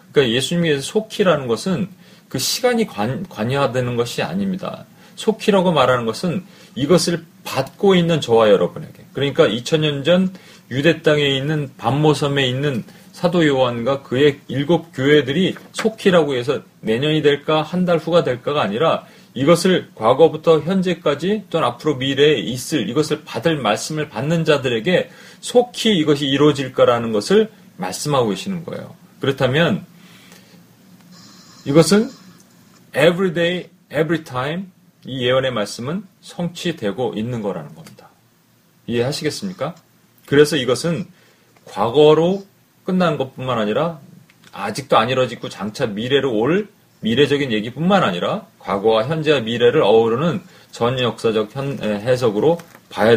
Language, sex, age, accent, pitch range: Korean, male, 40-59, native, 130-180 Hz